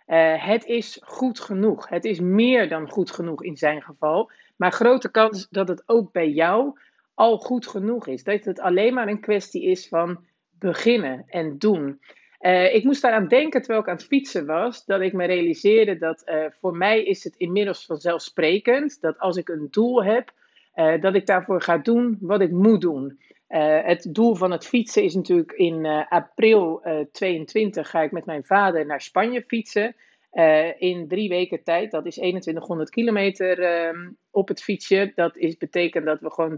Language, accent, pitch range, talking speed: Dutch, Dutch, 170-225 Hz, 190 wpm